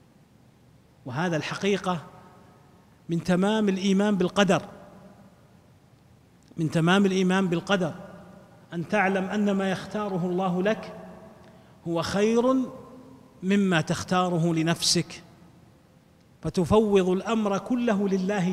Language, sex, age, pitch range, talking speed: Arabic, male, 40-59, 170-205 Hz, 85 wpm